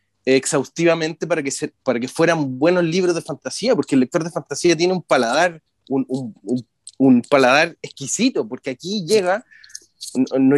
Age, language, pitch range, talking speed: 30-49, Spanish, 135-180 Hz, 165 wpm